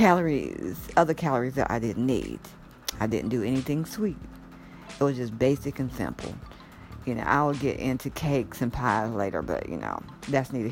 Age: 50-69